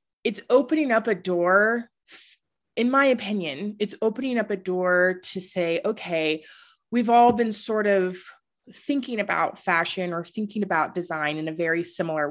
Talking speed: 155 wpm